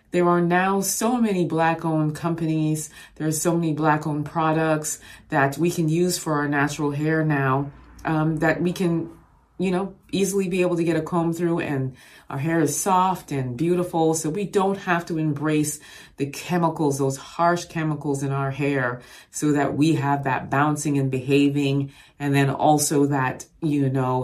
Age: 30-49